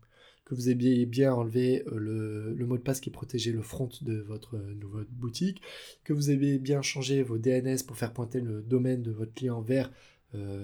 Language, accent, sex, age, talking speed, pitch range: French, French, male, 20-39, 195 wpm, 115-135 Hz